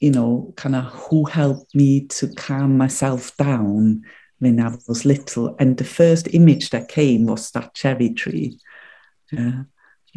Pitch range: 130-165 Hz